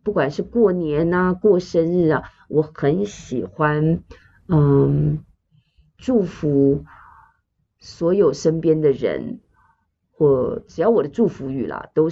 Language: Chinese